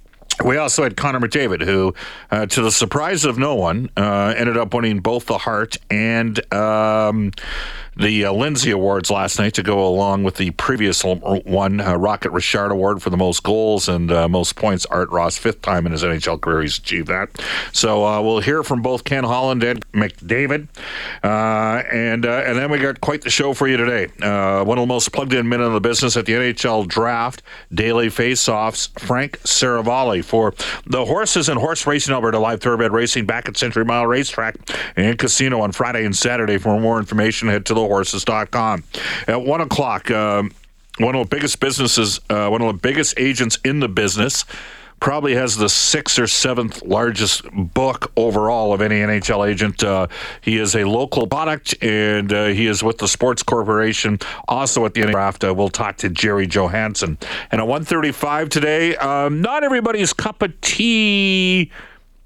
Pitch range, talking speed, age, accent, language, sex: 100-125 Hz, 185 wpm, 50-69, American, English, male